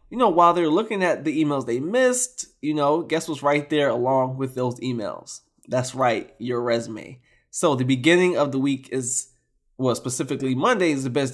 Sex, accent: male, American